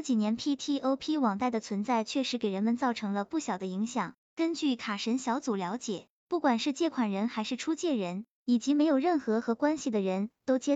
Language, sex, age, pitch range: Chinese, male, 20-39, 220-285 Hz